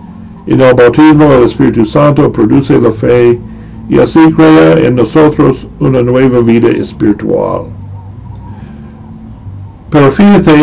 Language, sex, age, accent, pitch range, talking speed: Spanish, male, 60-79, American, 110-140 Hz, 115 wpm